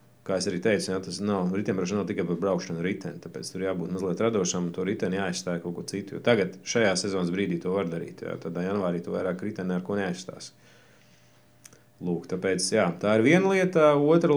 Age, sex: 30-49, male